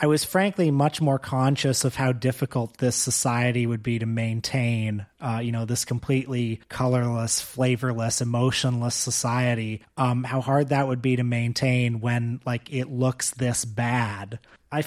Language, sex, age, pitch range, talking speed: English, male, 30-49, 115-135 Hz, 155 wpm